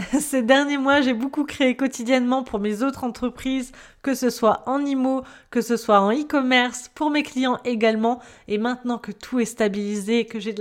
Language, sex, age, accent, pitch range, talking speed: French, female, 20-39, French, 200-260 Hz, 200 wpm